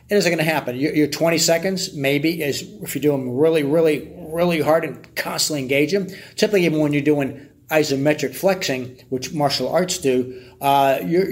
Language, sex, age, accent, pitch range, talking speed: English, male, 40-59, American, 130-155 Hz, 185 wpm